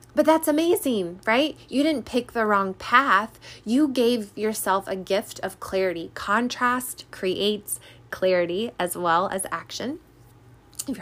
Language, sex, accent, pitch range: English, female, American, 185-245 Hz